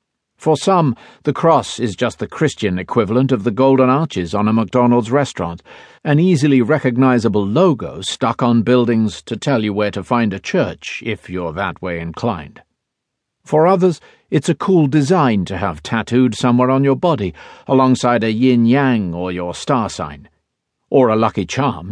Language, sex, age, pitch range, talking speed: English, male, 50-69, 105-140 Hz, 165 wpm